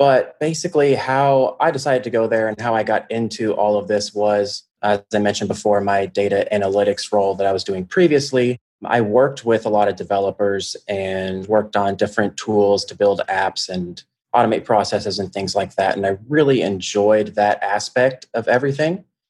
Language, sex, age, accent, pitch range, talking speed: English, male, 20-39, American, 100-125 Hz, 185 wpm